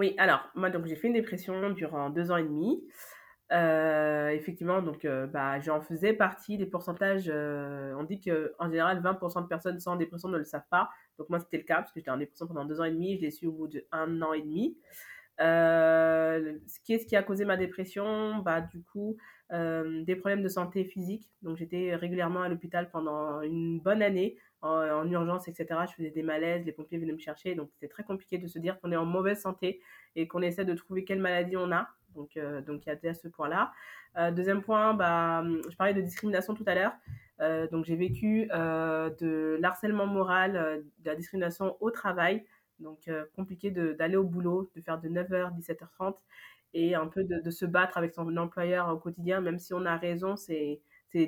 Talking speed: 220 wpm